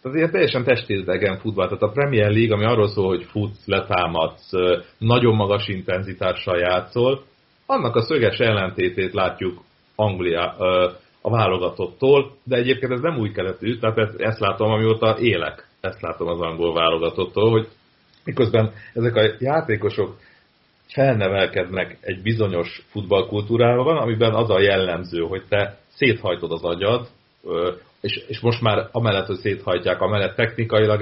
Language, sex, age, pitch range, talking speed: Hungarian, male, 40-59, 95-125 Hz, 130 wpm